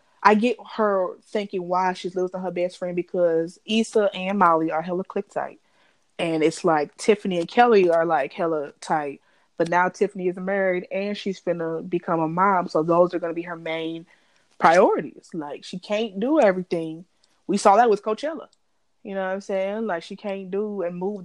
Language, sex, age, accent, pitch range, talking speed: English, female, 20-39, American, 170-205 Hz, 190 wpm